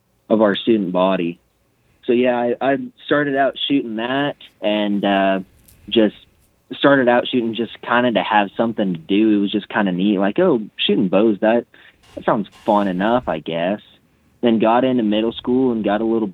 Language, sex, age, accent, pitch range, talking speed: English, male, 20-39, American, 105-115 Hz, 185 wpm